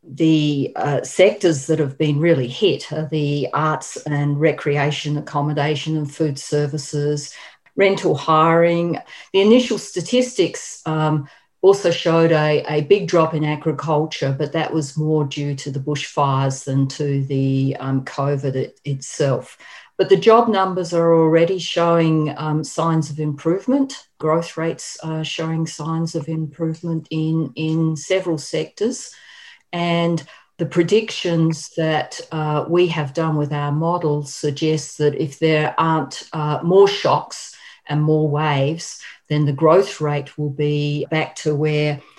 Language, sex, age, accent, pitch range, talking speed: English, female, 50-69, Australian, 145-165 Hz, 140 wpm